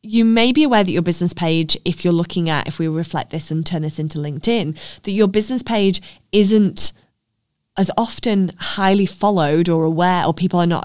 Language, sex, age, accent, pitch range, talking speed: English, female, 20-39, British, 160-195 Hz, 200 wpm